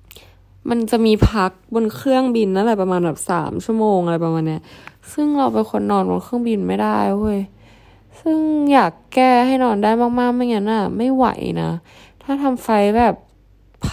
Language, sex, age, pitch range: Thai, female, 10-29, 170-225 Hz